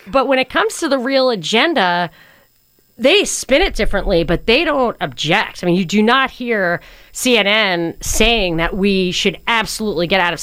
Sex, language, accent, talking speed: female, English, American, 180 wpm